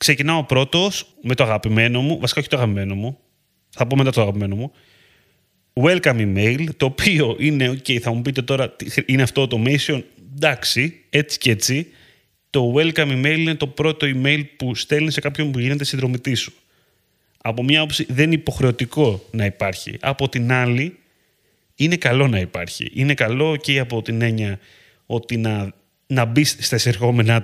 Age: 30-49